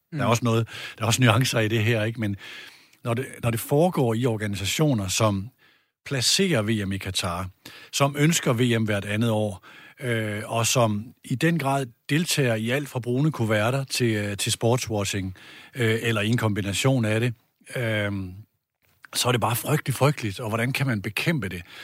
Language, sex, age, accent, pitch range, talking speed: Danish, male, 60-79, native, 105-125 Hz, 180 wpm